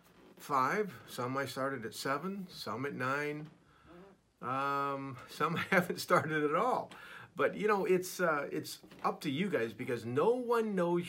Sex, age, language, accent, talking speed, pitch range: male, 50-69, English, American, 155 wpm, 130-165 Hz